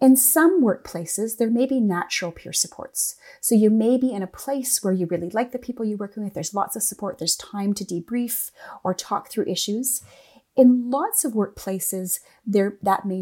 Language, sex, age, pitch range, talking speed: English, female, 30-49, 190-250 Hz, 200 wpm